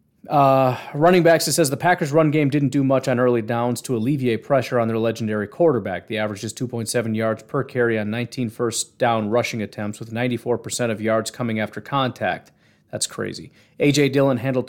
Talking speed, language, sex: 190 wpm, English, male